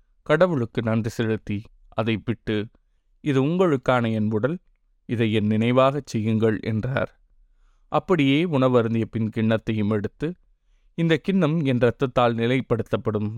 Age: 20-39